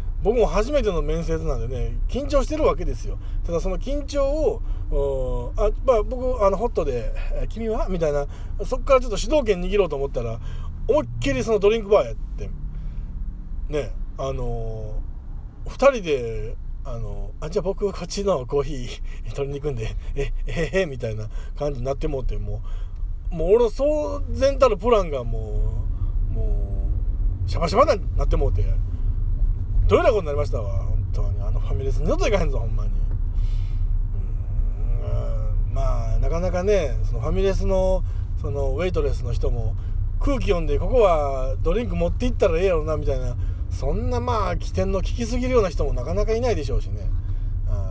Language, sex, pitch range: Japanese, male, 95-140 Hz